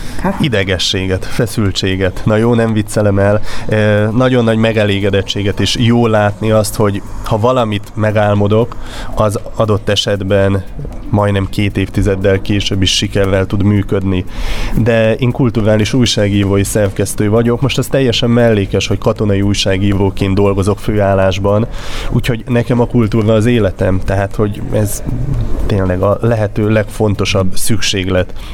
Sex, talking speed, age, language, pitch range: male, 120 wpm, 20-39, Hungarian, 100-115 Hz